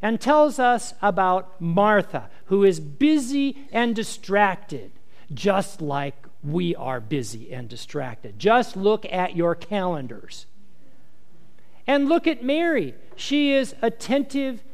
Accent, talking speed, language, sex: American, 120 wpm, English, male